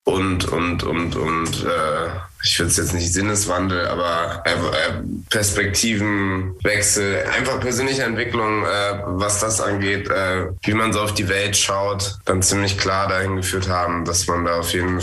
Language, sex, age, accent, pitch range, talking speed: German, male, 20-39, German, 90-105 Hz, 160 wpm